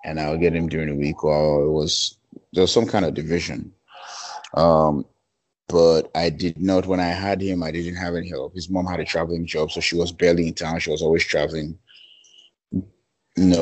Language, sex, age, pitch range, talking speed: English, male, 30-49, 80-90 Hz, 210 wpm